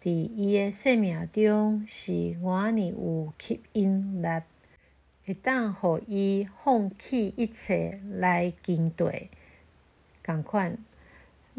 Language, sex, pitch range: Chinese, female, 175-225 Hz